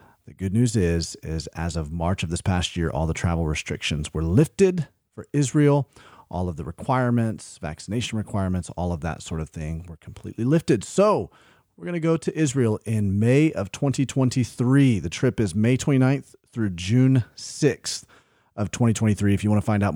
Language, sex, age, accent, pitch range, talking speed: English, male, 30-49, American, 90-120 Hz, 185 wpm